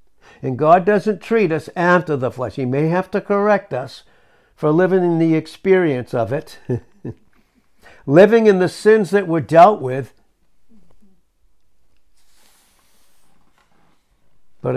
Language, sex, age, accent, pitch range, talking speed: English, male, 60-79, American, 155-215 Hz, 120 wpm